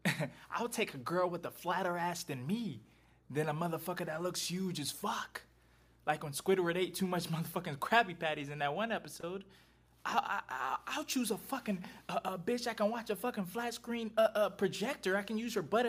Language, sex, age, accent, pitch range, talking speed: English, male, 20-39, American, 150-220 Hz, 210 wpm